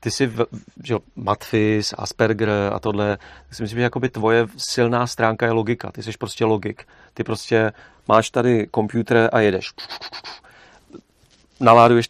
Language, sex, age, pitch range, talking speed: Czech, male, 40-59, 105-115 Hz, 140 wpm